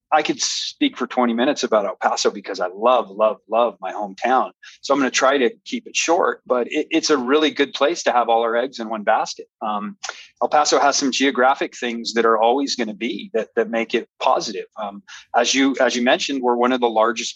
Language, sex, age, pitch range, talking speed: English, male, 30-49, 115-135 Hz, 240 wpm